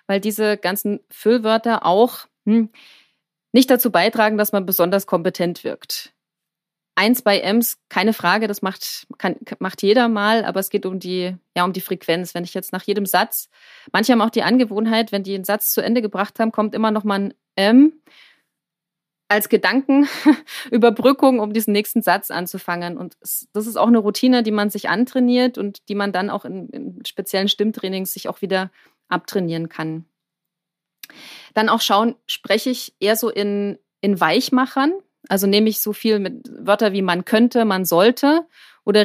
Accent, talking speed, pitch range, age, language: German, 175 wpm, 185-225 Hz, 20-39, German